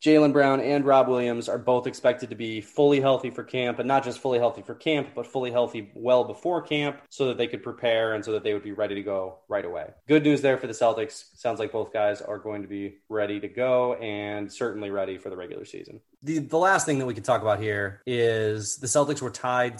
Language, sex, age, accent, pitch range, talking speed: English, male, 20-39, American, 105-125 Hz, 250 wpm